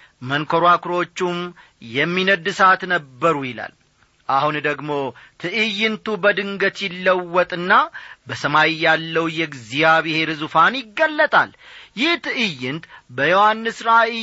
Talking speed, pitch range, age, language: 70 wpm, 150-220 Hz, 40-59, Amharic